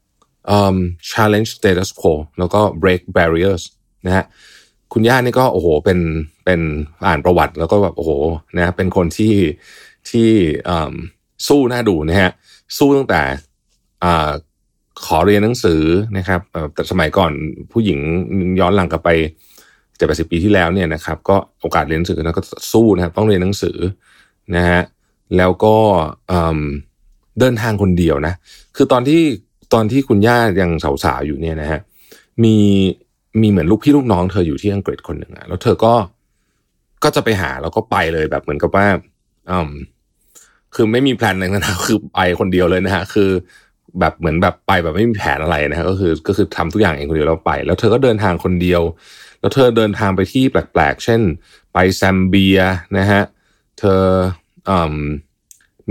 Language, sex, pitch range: Thai, male, 85-105 Hz